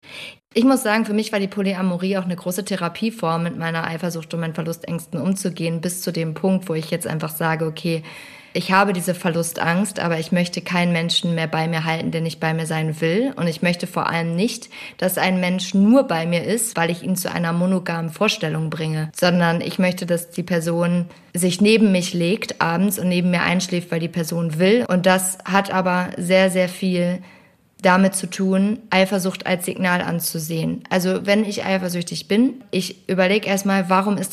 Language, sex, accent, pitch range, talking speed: German, female, German, 170-205 Hz, 195 wpm